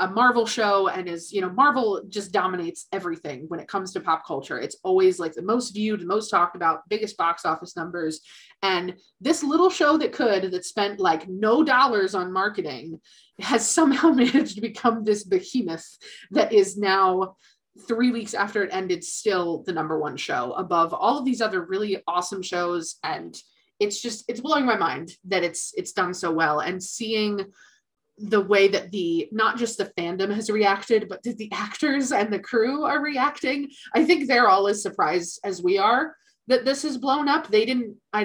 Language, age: English, 20-39